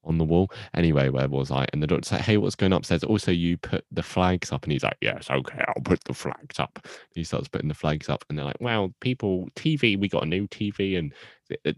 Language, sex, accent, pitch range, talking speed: English, male, British, 75-100 Hz, 260 wpm